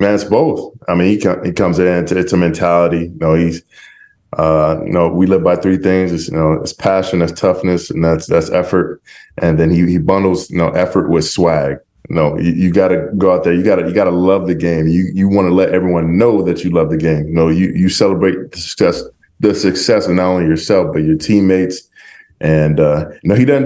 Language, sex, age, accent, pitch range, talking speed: English, male, 20-39, American, 85-100 Hz, 250 wpm